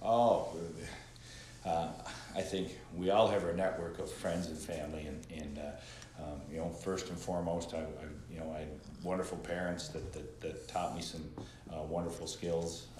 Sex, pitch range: male, 75-85 Hz